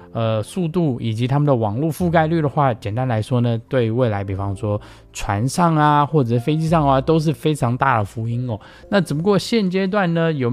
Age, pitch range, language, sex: 20-39, 110-150 Hz, Chinese, male